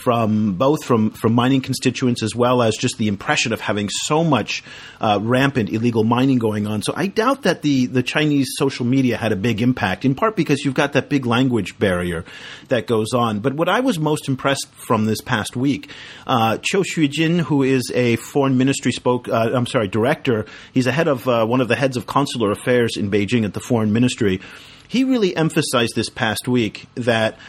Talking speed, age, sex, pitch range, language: 205 wpm, 40-59, male, 110-135 Hz, English